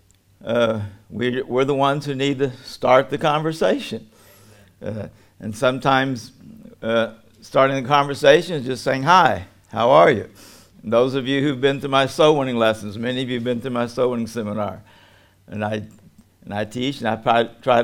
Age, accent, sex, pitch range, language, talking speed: 60-79, American, male, 110-140 Hz, English, 185 wpm